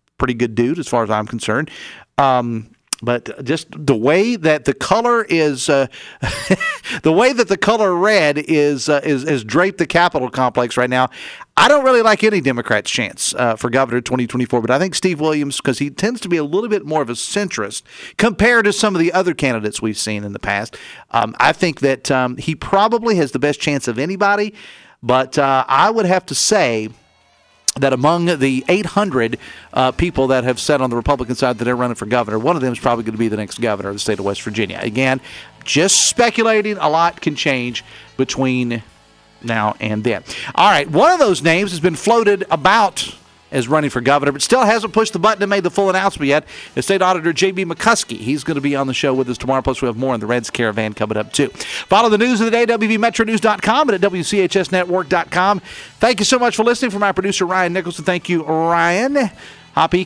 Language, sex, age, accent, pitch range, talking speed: English, male, 40-59, American, 125-195 Hz, 215 wpm